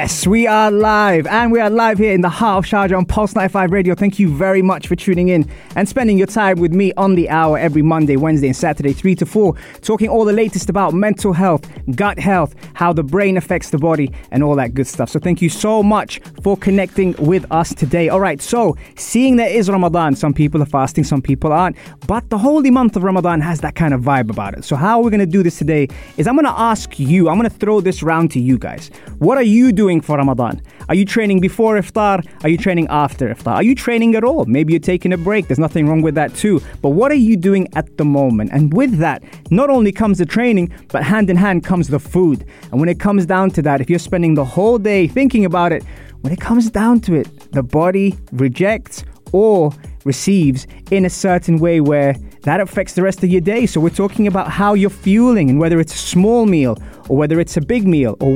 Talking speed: 240 wpm